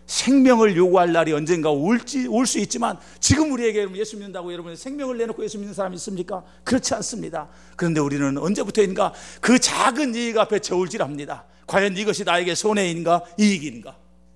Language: Korean